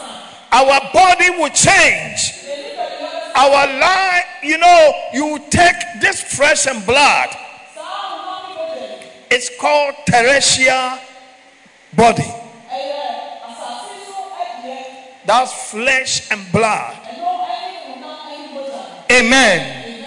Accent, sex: Nigerian, male